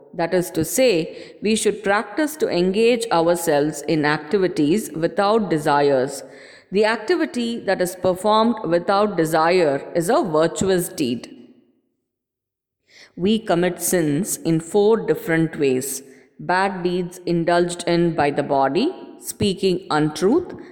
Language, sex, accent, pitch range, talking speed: English, female, Indian, 160-210 Hz, 120 wpm